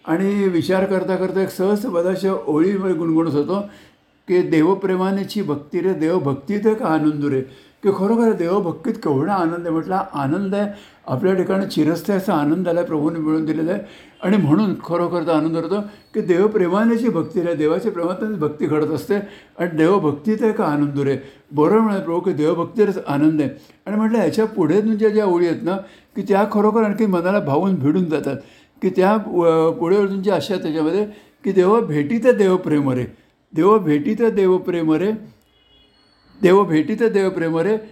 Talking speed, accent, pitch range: 170 wpm, native, 160-205 Hz